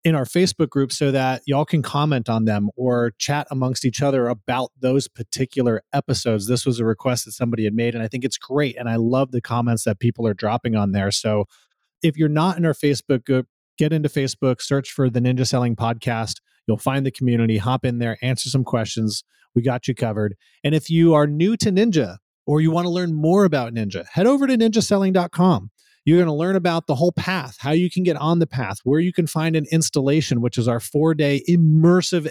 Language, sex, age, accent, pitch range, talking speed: English, male, 30-49, American, 120-155 Hz, 225 wpm